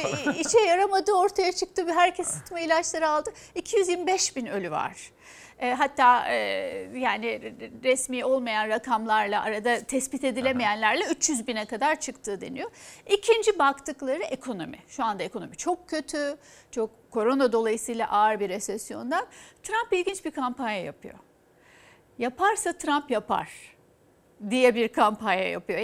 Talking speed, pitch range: 120 wpm, 235-330 Hz